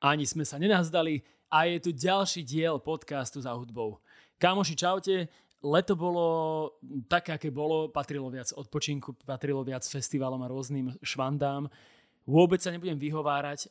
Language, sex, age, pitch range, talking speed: English, male, 20-39, 130-155 Hz, 140 wpm